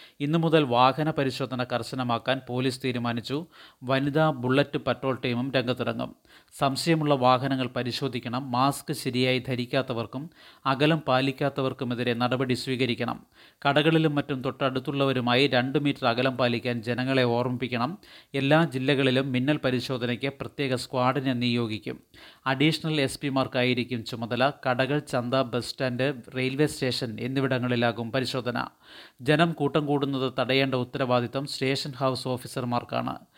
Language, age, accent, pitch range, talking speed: Malayalam, 30-49, native, 125-140 Hz, 100 wpm